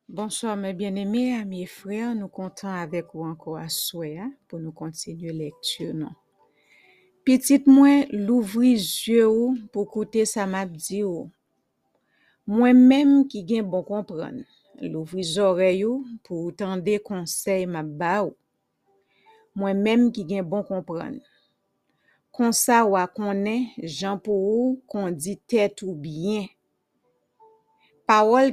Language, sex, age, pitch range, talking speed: English, female, 50-69, 180-225 Hz, 115 wpm